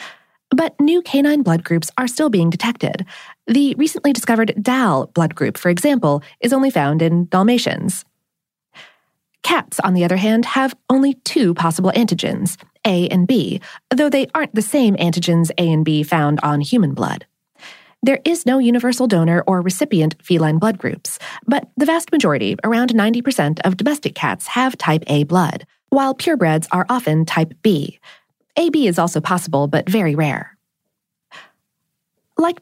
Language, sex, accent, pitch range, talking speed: English, female, American, 165-245 Hz, 160 wpm